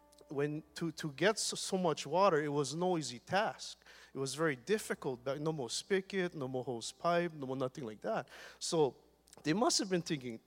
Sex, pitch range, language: male, 125-170 Hz, English